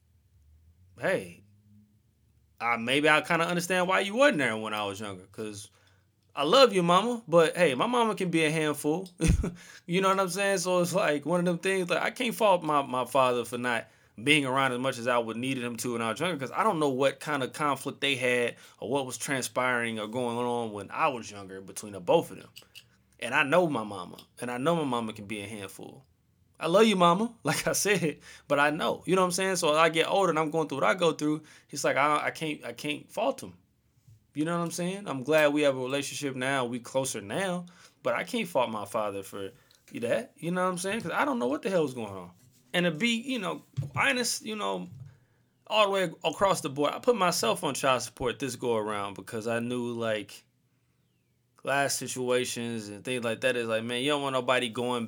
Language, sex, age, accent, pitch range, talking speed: English, male, 20-39, American, 115-170 Hz, 240 wpm